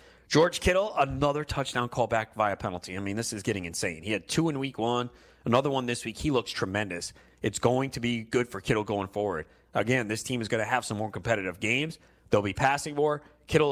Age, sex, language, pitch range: 30-49, male, English, 110-140 Hz